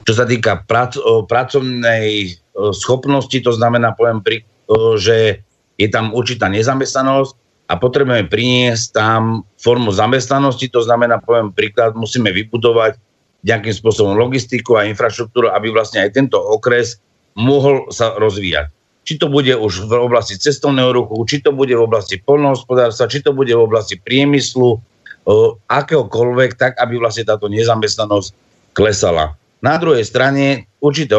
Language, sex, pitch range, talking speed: Slovak, male, 110-135 Hz, 135 wpm